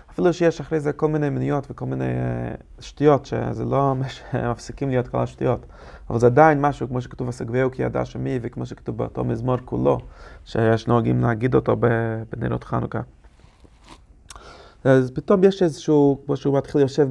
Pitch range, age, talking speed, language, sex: 115-140 Hz, 30-49, 160 wpm, English, male